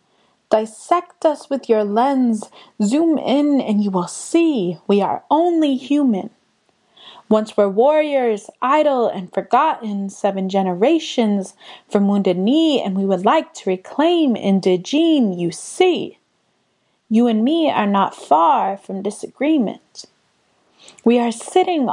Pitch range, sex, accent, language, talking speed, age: 205-305 Hz, female, American, English, 130 wpm, 20-39